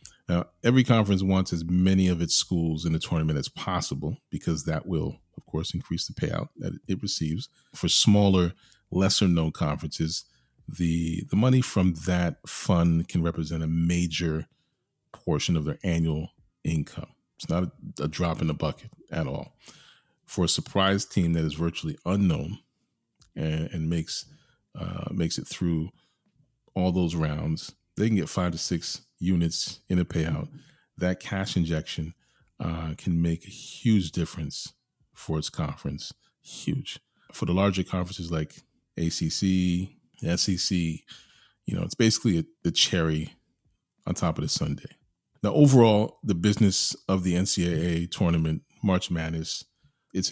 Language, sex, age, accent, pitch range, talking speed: English, male, 40-59, American, 80-95 Hz, 150 wpm